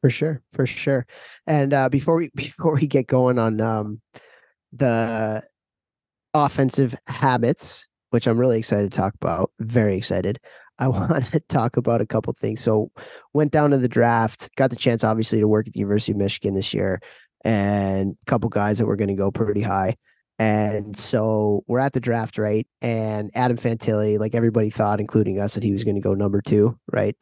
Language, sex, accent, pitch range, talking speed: English, male, American, 105-120 Hz, 195 wpm